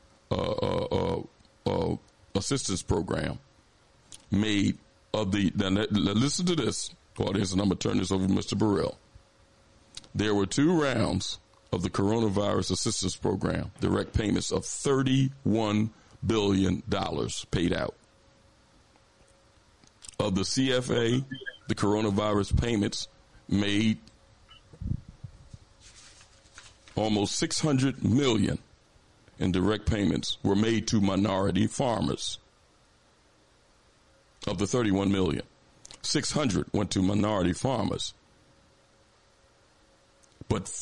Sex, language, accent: male, English, American